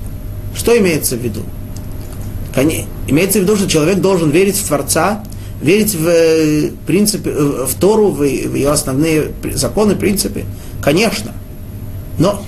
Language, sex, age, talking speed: Russian, male, 30-49, 115 wpm